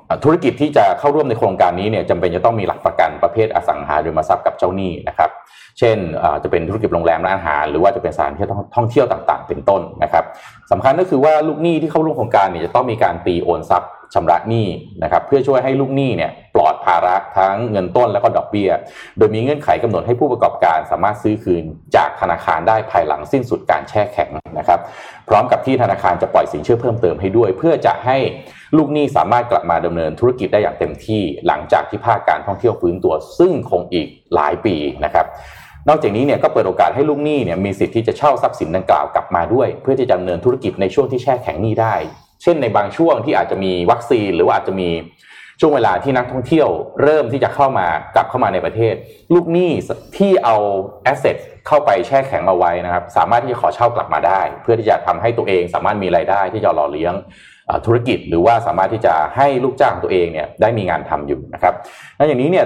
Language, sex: Thai, male